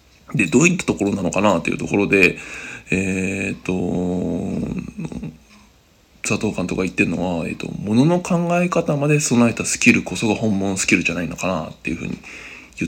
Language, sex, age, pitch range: Japanese, male, 20-39, 85-130 Hz